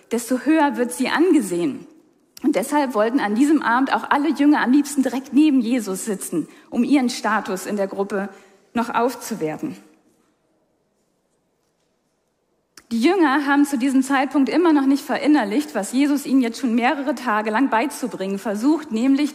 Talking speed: 150 wpm